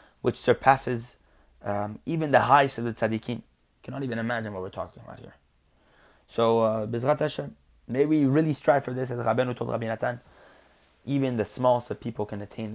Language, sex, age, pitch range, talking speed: English, male, 20-39, 105-125 Hz, 170 wpm